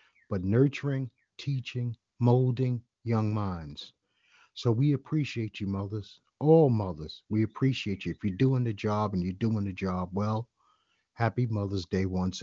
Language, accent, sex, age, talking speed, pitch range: English, American, male, 50-69, 150 wpm, 100-125 Hz